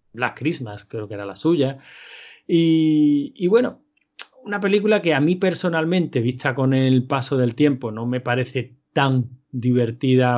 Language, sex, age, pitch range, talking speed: Spanish, male, 30-49, 120-145 Hz, 155 wpm